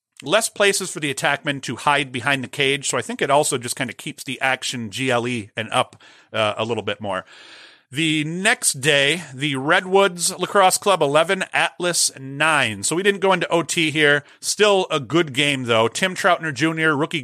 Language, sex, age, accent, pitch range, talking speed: English, male, 40-59, American, 130-165 Hz, 190 wpm